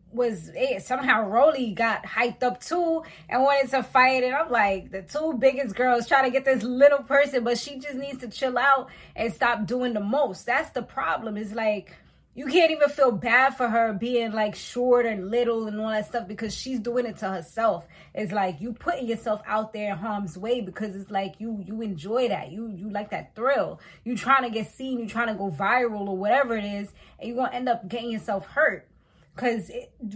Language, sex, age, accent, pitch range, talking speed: English, female, 20-39, American, 215-265 Hz, 215 wpm